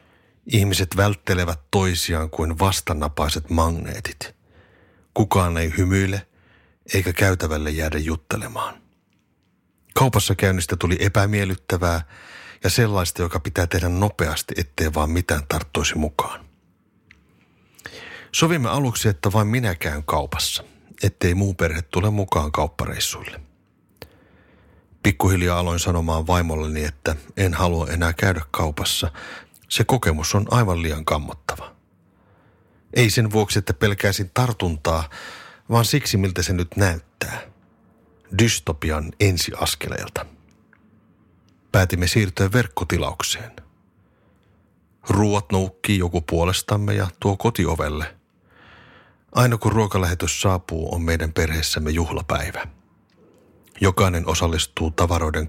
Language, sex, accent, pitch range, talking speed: Finnish, male, native, 80-100 Hz, 100 wpm